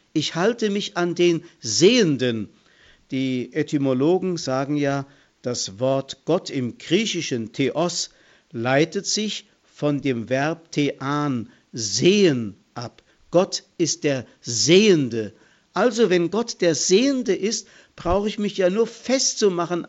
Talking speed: 120 wpm